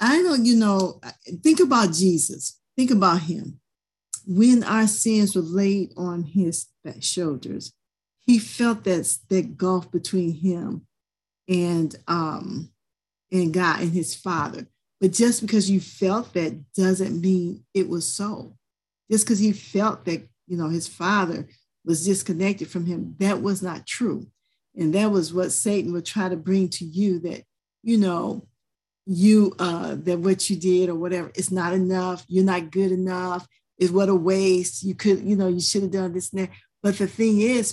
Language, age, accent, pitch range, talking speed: English, 50-69, American, 175-205 Hz, 170 wpm